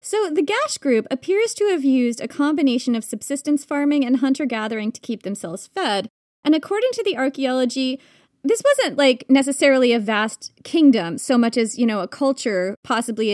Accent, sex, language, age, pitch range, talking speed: American, female, English, 30-49, 215-285 Hz, 180 wpm